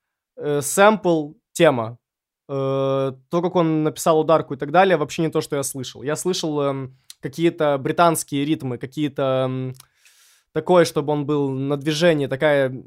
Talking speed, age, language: 135 wpm, 20-39, Russian